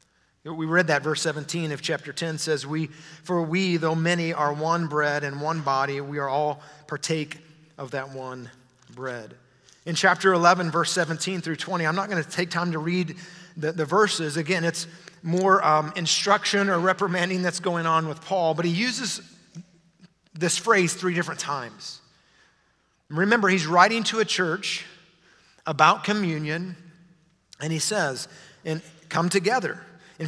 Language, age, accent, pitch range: English, 30-49, American, 155-190 Hz